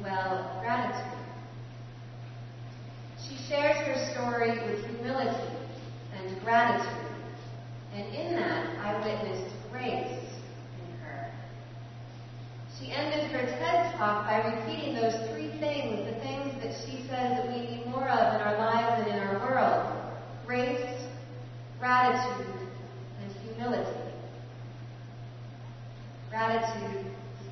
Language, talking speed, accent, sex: English, 110 wpm, American, female